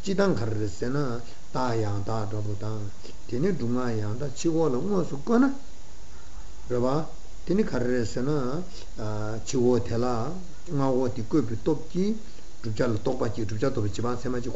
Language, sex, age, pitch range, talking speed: Italian, male, 60-79, 105-150 Hz, 105 wpm